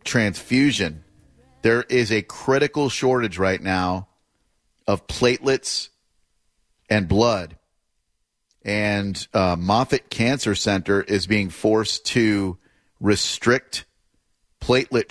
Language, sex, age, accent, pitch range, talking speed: English, male, 40-59, American, 95-115 Hz, 90 wpm